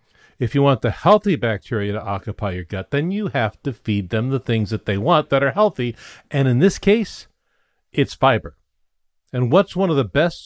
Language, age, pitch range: English, 50-69, 110-165 Hz